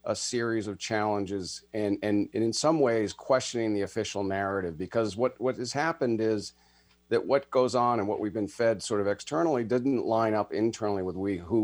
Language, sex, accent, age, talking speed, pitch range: English, male, American, 40-59, 200 wpm, 90-115 Hz